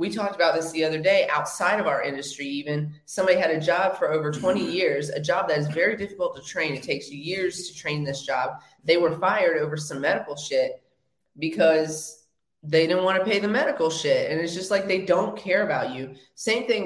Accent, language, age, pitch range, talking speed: American, English, 20-39, 150-190 Hz, 225 wpm